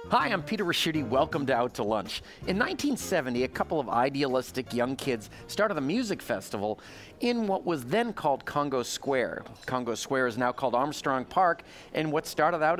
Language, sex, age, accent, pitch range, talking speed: English, male, 40-59, American, 125-170 Hz, 185 wpm